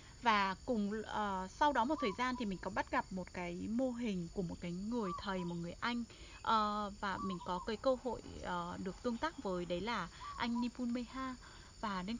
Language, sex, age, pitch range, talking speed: Vietnamese, female, 20-39, 190-245 Hz, 200 wpm